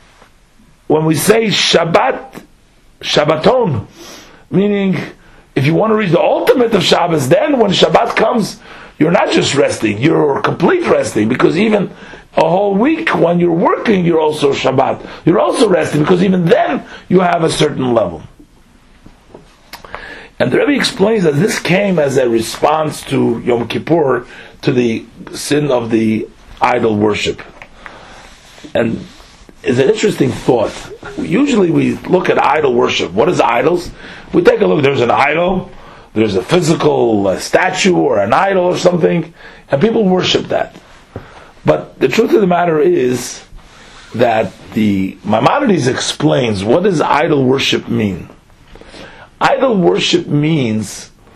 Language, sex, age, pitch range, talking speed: English, male, 50-69, 120-190 Hz, 145 wpm